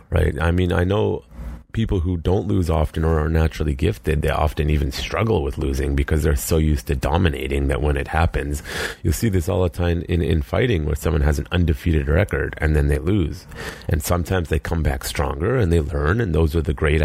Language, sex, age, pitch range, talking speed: English, male, 30-49, 75-90 Hz, 220 wpm